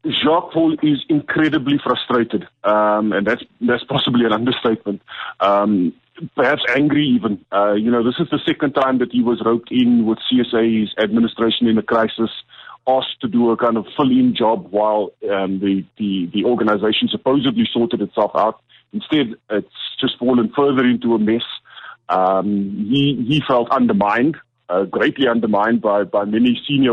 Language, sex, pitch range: English, male, 110-135 Hz